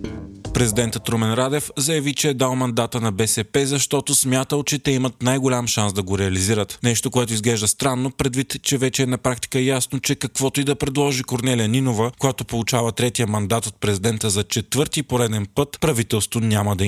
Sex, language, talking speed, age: male, Bulgarian, 180 wpm, 20-39